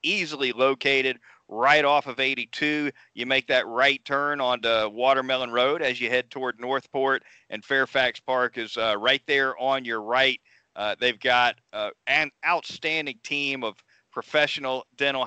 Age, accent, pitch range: 40-59, American, 125-140 Hz